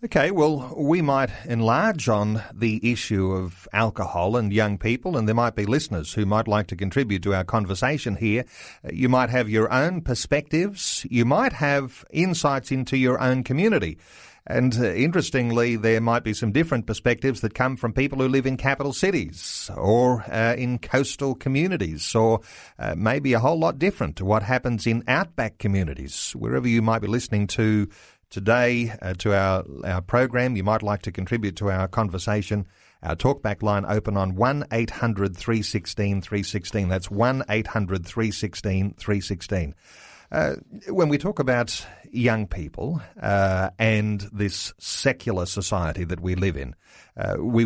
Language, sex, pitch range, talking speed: English, male, 100-125 Hz, 155 wpm